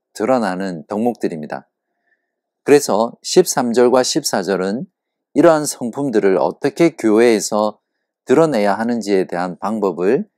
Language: Korean